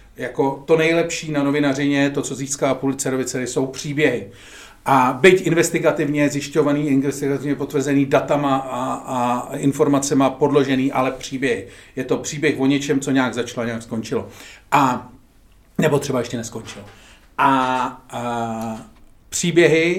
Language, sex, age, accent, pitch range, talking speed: Czech, male, 40-59, native, 120-150 Hz, 125 wpm